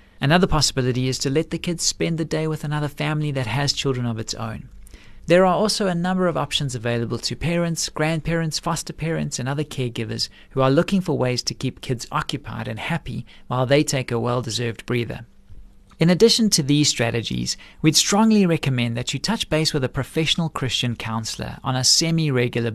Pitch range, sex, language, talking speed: 125-165 Hz, male, English, 190 wpm